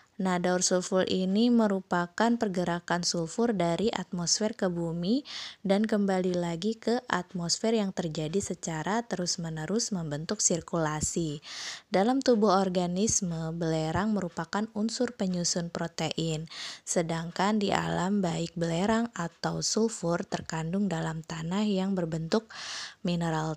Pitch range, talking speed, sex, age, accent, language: 170-210 Hz, 110 wpm, female, 20-39, native, Indonesian